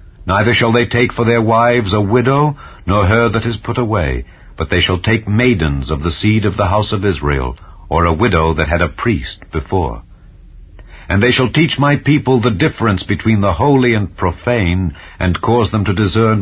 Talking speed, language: 195 wpm, English